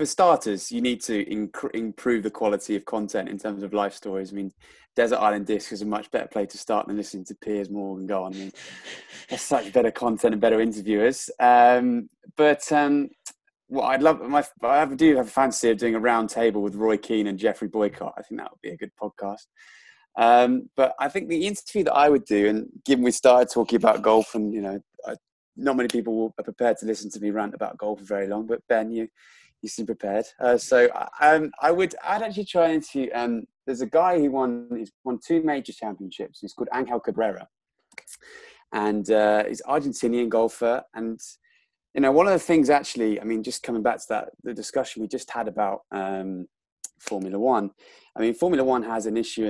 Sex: male